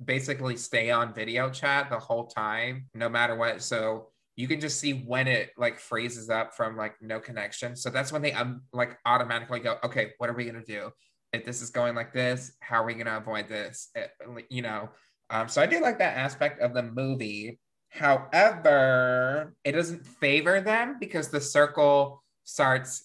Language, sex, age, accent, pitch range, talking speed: English, male, 20-39, American, 120-145 Hz, 195 wpm